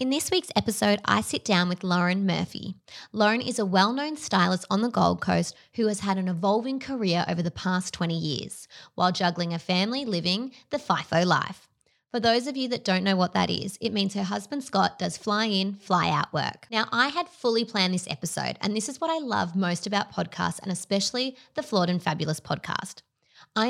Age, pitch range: 20-39, 180-235 Hz